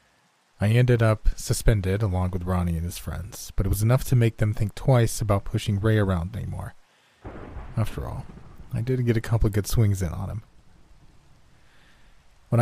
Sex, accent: male, American